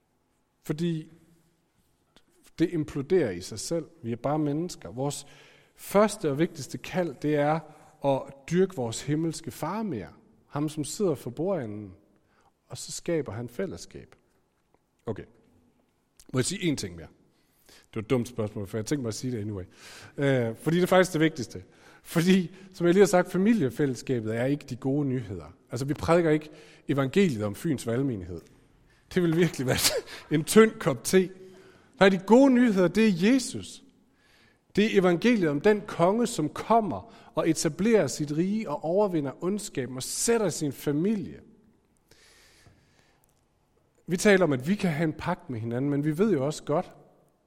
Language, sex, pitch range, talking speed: Danish, male, 130-180 Hz, 165 wpm